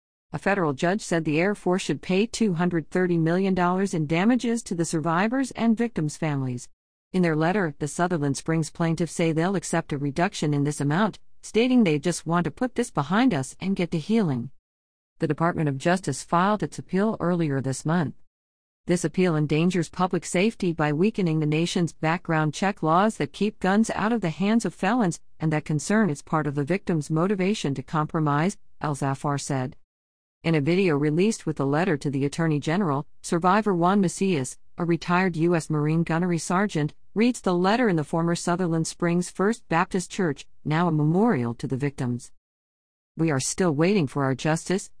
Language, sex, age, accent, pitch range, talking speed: English, female, 50-69, American, 150-190 Hz, 180 wpm